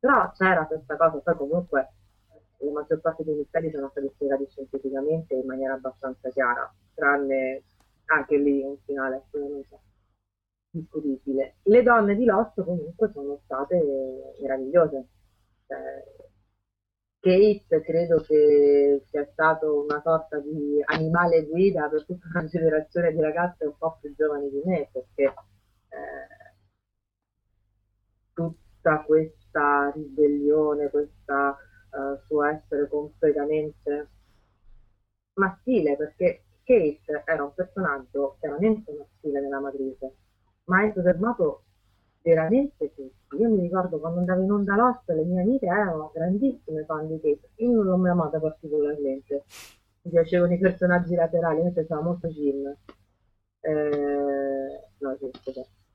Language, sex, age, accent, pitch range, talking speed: Italian, female, 30-49, native, 130-165 Hz, 120 wpm